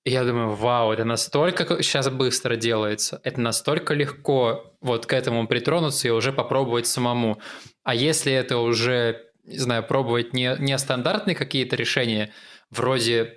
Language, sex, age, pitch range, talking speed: Russian, male, 20-39, 120-145 Hz, 140 wpm